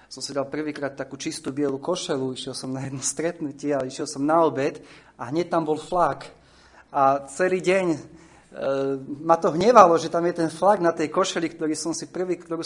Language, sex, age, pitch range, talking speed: Slovak, male, 30-49, 135-165 Hz, 205 wpm